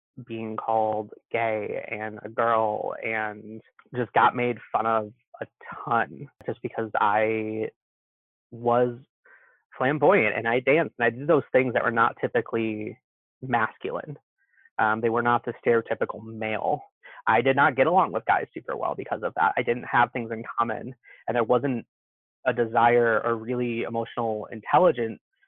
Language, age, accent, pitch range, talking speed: English, 20-39, American, 110-130 Hz, 155 wpm